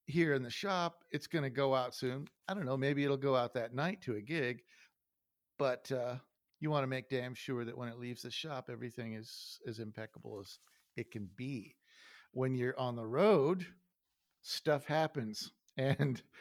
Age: 50-69